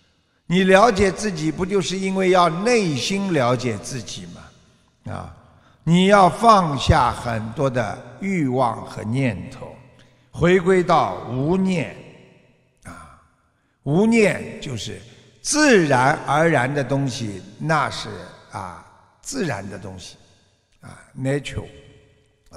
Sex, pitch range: male, 120-190 Hz